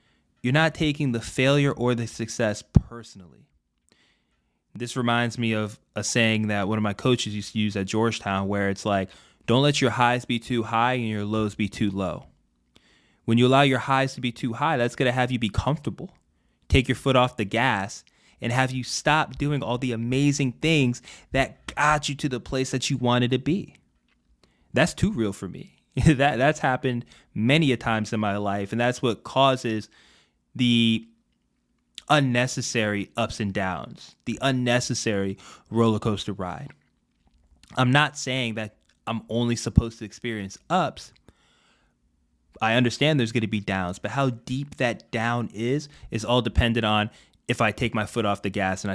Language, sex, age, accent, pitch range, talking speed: English, male, 20-39, American, 105-130 Hz, 180 wpm